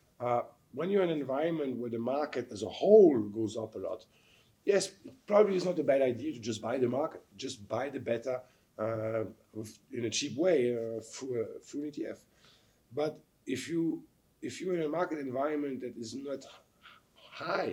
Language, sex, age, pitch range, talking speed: Czech, male, 50-69, 110-150 Hz, 190 wpm